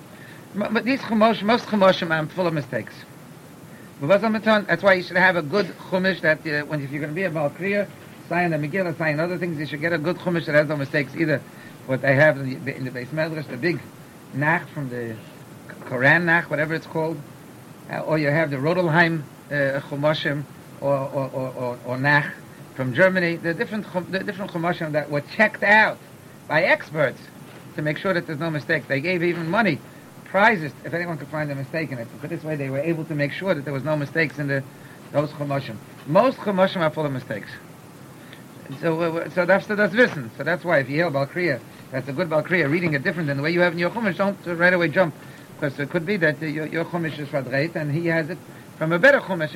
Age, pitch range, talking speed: 50-69, 145-175 Hz, 230 wpm